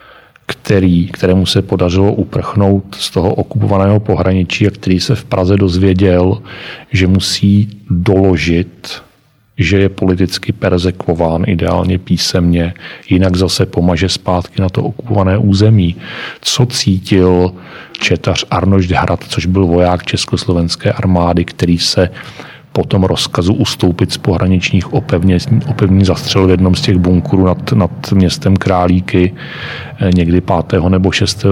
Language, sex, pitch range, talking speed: Czech, male, 90-110 Hz, 130 wpm